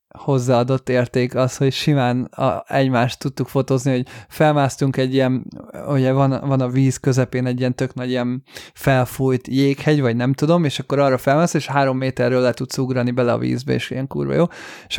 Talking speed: 180 wpm